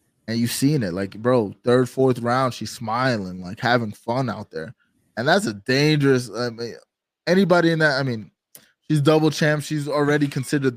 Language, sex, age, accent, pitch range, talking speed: English, male, 20-39, American, 115-150 Hz, 185 wpm